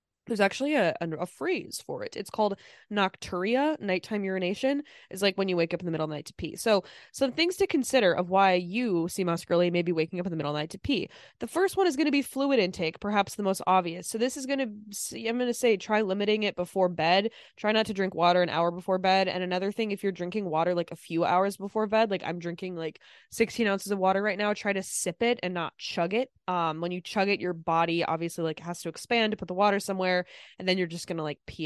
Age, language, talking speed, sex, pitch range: 20-39, English, 265 wpm, female, 175-220 Hz